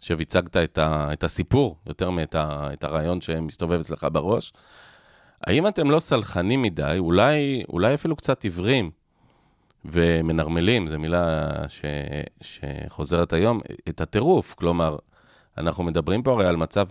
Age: 30-49